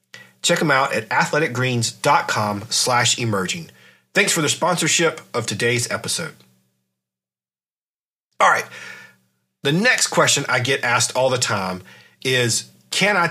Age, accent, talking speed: 40-59, American, 125 wpm